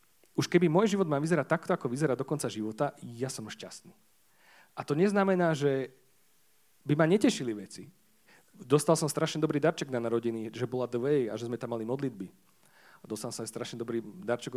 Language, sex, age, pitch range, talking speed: Slovak, male, 40-59, 120-170 Hz, 185 wpm